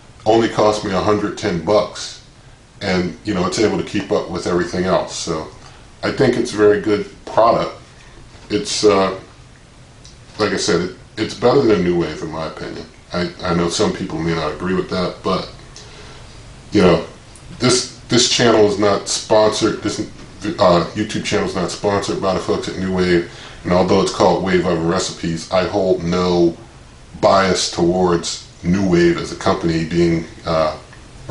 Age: 40-59